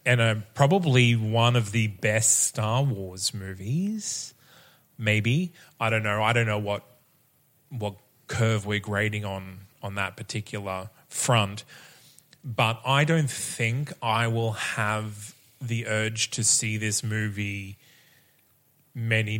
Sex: male